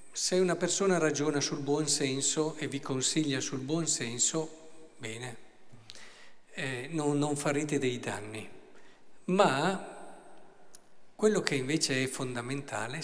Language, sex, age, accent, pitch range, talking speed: Italian, male, 50-69, native, 125-160 Hz, 120 wpm